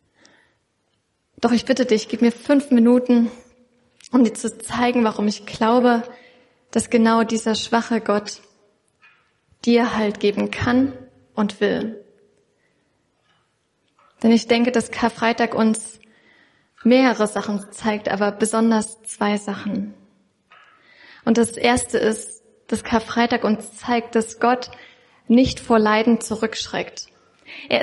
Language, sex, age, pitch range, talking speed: German, female, 20-39, 220-245 Hz, 115 wpm